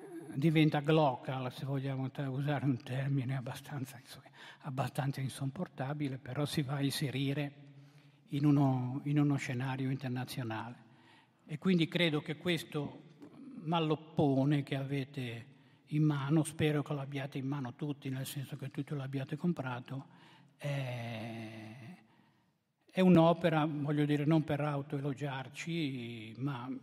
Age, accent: 60-79, native